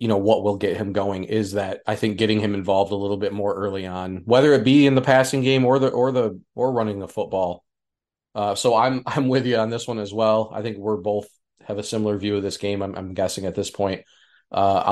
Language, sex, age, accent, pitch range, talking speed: English, male, 30-49, American, 95-115 Hz, 260 wpm